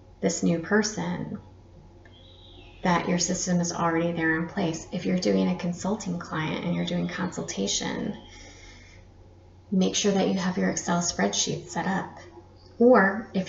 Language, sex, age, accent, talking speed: English, female, 20-39, American, 145 wpm